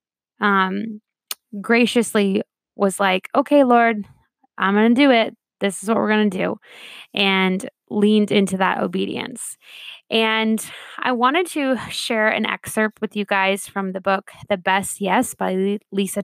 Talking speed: 150 wpm